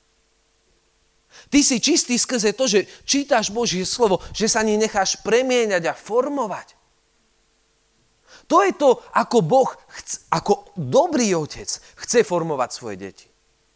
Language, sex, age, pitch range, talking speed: Slovak, male, 40-59, 165-250 Hz, 125 wpm